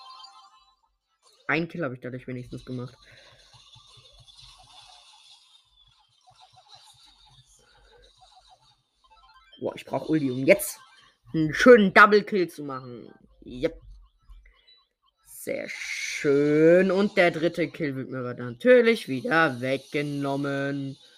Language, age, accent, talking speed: German, 20-39, German, 90 wpm